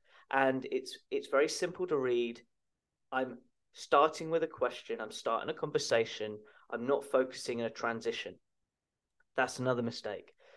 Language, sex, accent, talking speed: English, male, British, 140 wpm